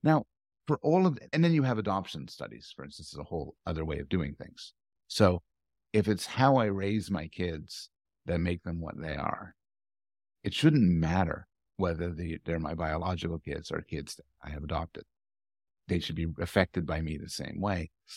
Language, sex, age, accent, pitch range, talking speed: English, male, 50-69, American, 80-105 Hz, 190 wpm